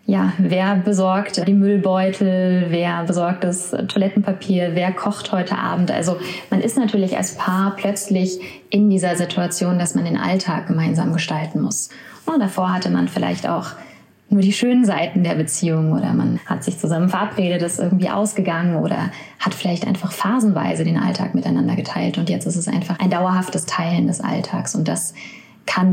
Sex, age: female, 20-39